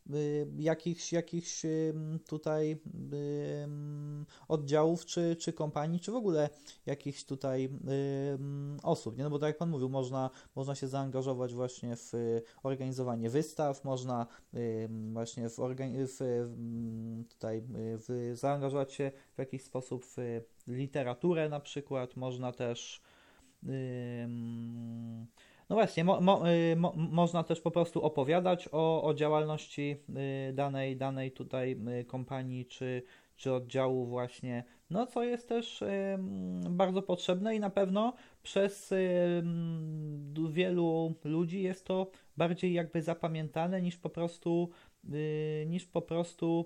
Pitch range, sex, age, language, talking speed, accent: 130-170 Hz, male, 20-39, Polish, 115 wpm, native